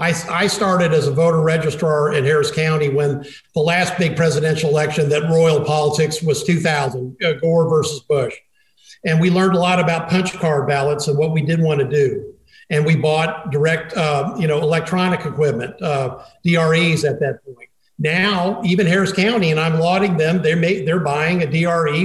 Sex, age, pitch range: male, 50-69, 150-180 Hz